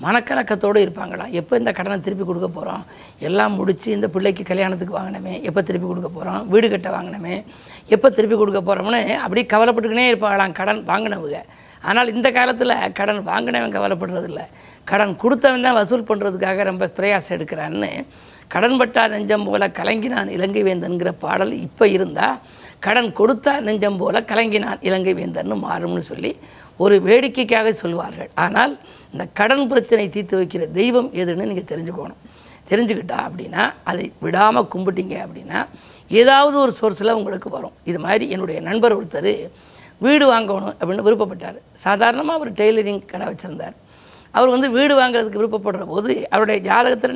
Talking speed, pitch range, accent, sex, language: 135 wpm, 195-235 Hz, native, female, Tamil